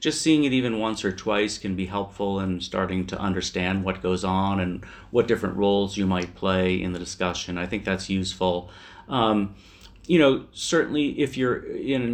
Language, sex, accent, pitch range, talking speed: English, male, American, 95-105 Hz, 190 wpm